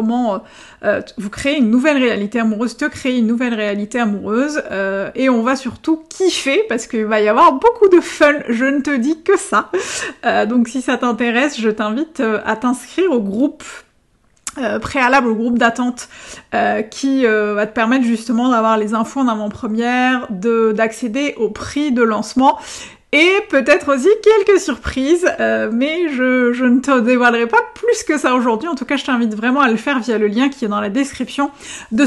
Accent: French